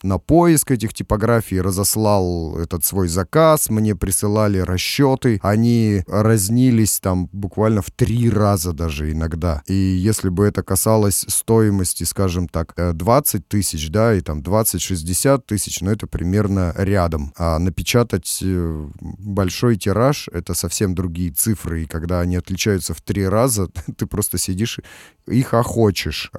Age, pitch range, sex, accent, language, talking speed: 30-49, 90-115 Hz, male, native, Russian, 135 wpm